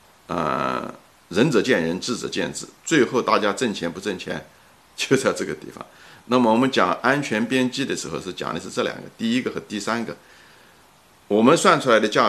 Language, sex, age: Chinese, male, 50-69